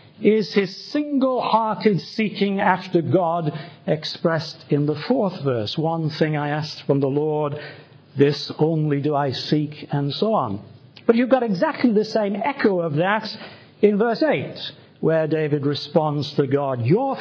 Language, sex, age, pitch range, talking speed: English, male, 50-69, 140-195 Hz, 155 wpm